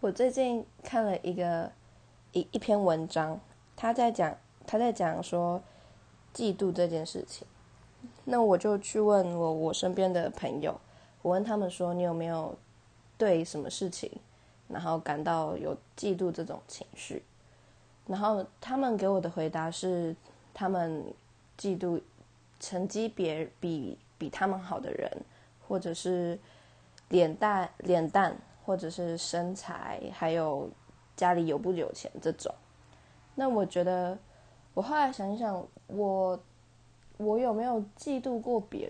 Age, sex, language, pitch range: 20-39, female, Chinese, 170-210 Hz